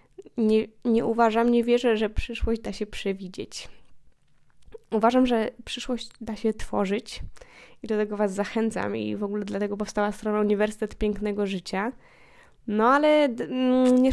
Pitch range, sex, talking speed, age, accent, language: 210-240 Hz, female, 140 wpm, 10-29, native, Polish